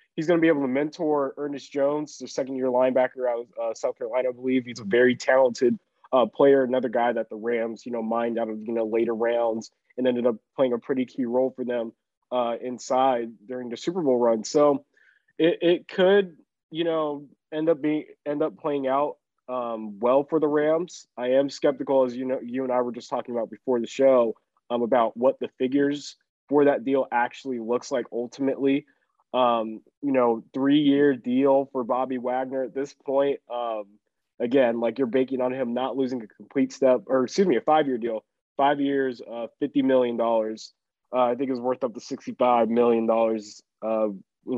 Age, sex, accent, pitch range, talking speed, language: 20-39, male, American, 115-135 Hz, 200 wpm, English